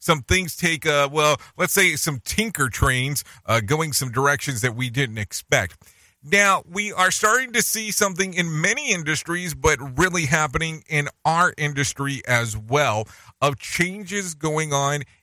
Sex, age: male, 40-59